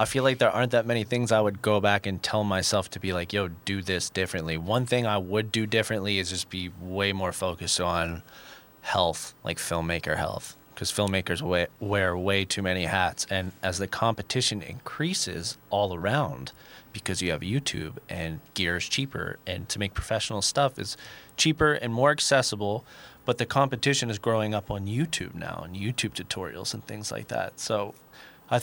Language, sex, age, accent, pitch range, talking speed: English, male, 20-39, American, 90-115 Hz, 185 wpm